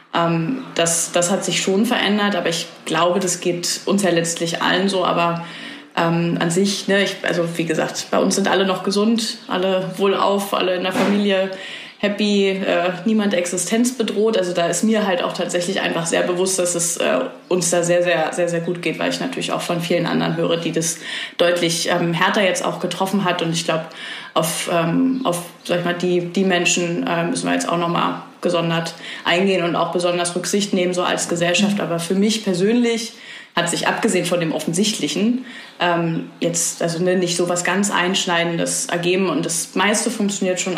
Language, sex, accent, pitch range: German, female, German, 170-205 Hz